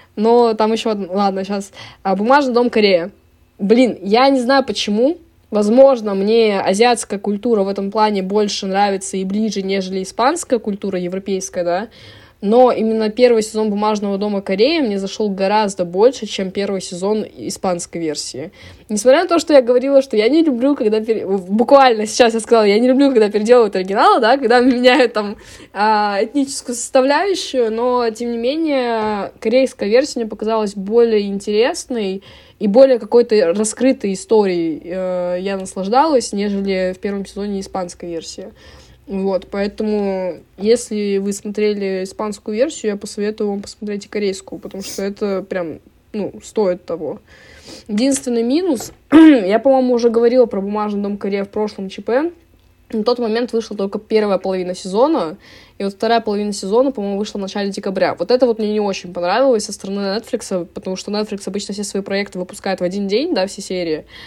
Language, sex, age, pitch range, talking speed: Russian, female, 20-39, 195-240 Hz, 160 wpm